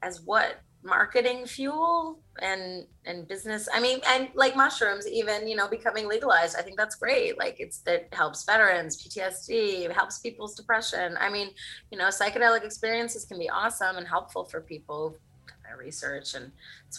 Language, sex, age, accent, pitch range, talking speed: English, female, 30-49, American, 190-260 Hz, 175 wpm